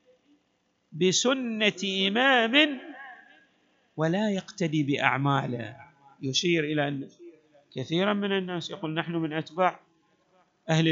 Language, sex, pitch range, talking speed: Arabic, male, 170-240 Hz, 90 wpm